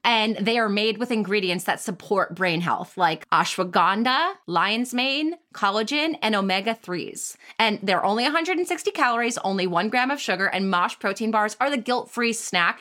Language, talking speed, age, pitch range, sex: English, 165 wpm, 20-39, 185-245 Hz, female